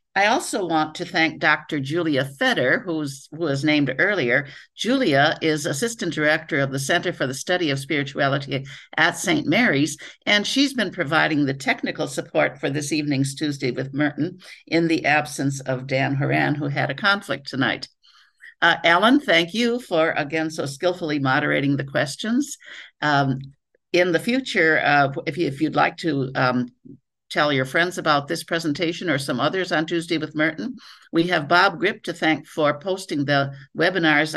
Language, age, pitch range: English, 60-79, 145-185 Hz